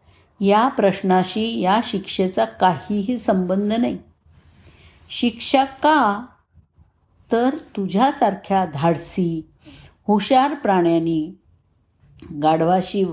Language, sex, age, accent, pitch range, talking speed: Marathi, female, 50-69, native, 160-205 Hz, 70 wpm